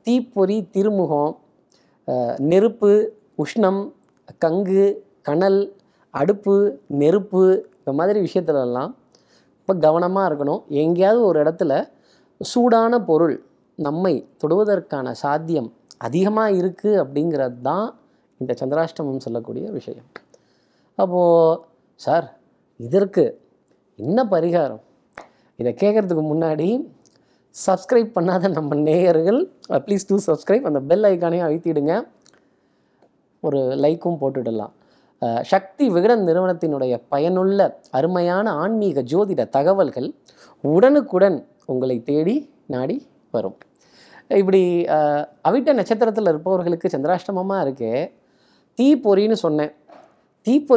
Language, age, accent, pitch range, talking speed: Tamil, 20-39, native, 150-200 Hz, 85 wpm